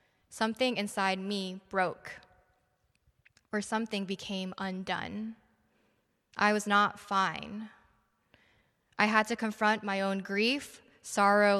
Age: 10-29